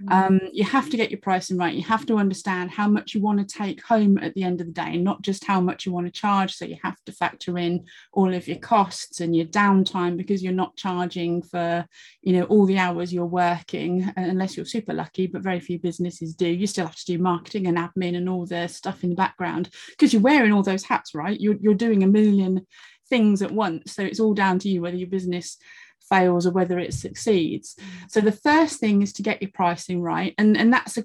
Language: English